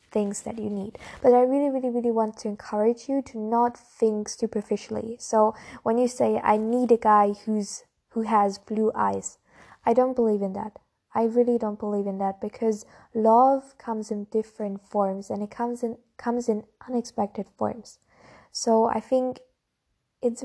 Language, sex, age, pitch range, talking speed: English, female, 10-29, 210-235 Hz, 175 wpm